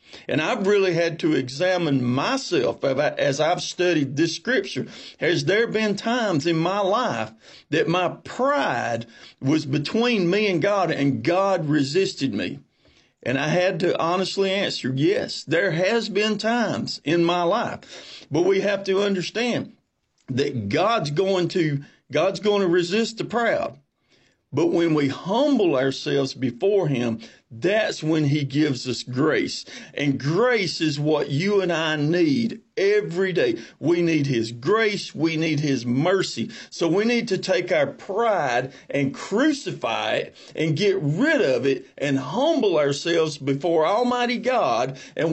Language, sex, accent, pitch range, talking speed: English, male, American, 145-205 Hz, 150 wpm